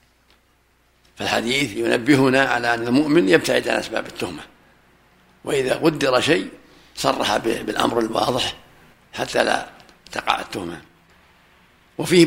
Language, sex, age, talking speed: Arabic, male, 60-79, 105 wpm